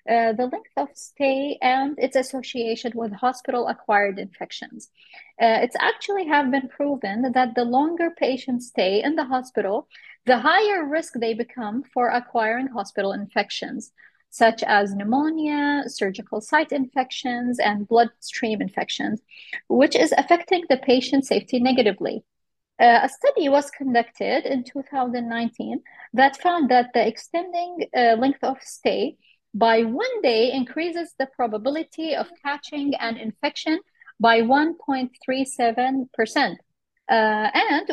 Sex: female